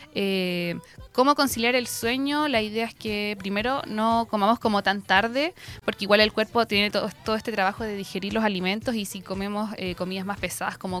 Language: Spanish